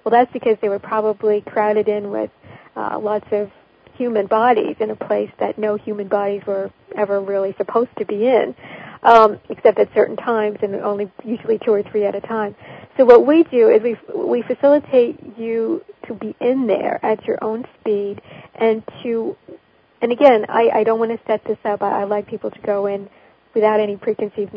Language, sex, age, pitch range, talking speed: English, female, 40-59, 210-235 Hz, 200 wpm